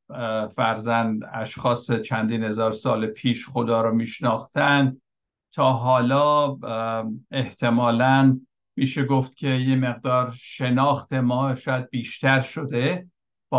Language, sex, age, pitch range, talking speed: Persian, male, 60-79, 115-140 Hz, 100 wpm